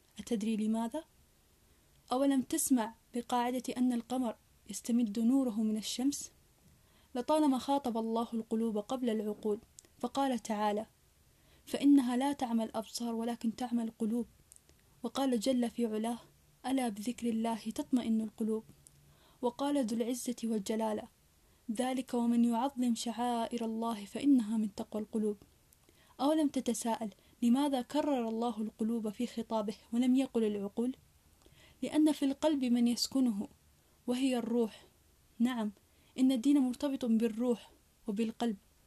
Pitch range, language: 225-255 Hz, Arabic